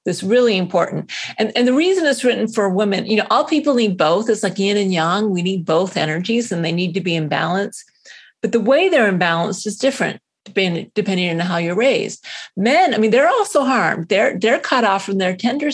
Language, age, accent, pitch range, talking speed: English, 40-59, American, 180-235 Hz, 220 wpm